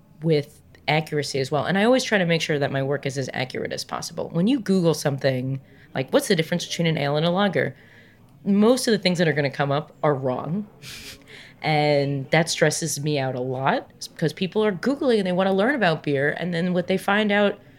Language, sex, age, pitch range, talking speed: English, female, 30-49, 150-200 Hz, 235 wpm